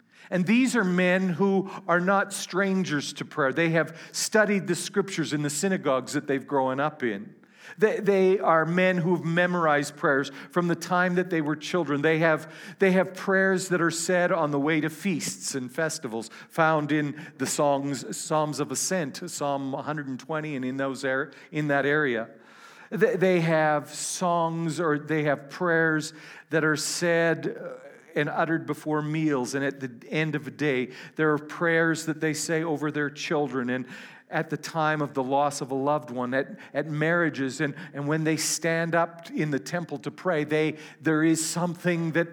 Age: 50-69